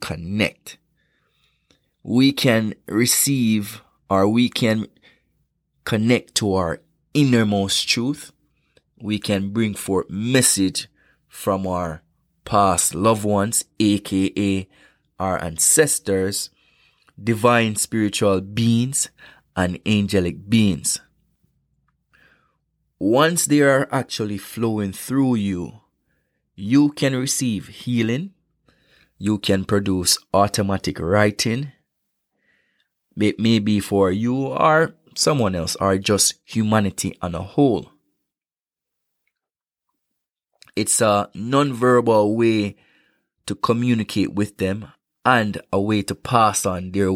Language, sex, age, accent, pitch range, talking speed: English, male, 20-39, Jamaican, 95-120 Hz, 95 wpm